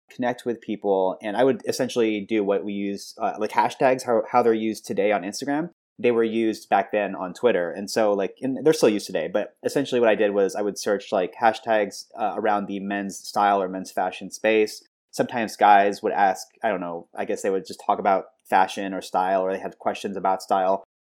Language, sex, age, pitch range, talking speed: English, male, 30-49, 100-115 Hz, 225 wpm